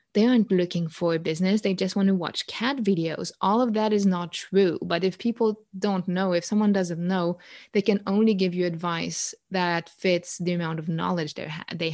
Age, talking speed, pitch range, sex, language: 20-39, 205 wpm, 175-215 Hz, female, English